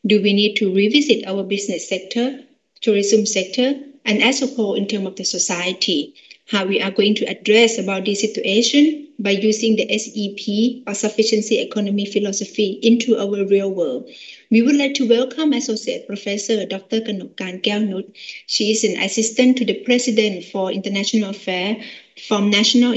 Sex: female